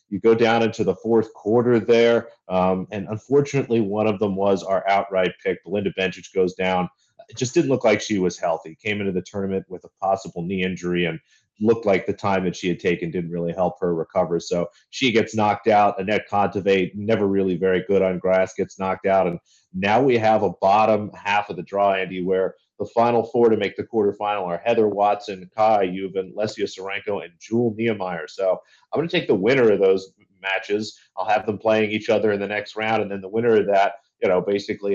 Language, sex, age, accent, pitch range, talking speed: English, male, 30-49, American, 90-110 Hz, 220 wpm